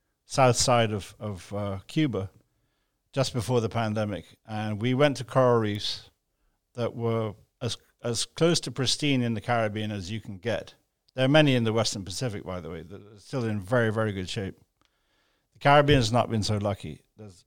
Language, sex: English, male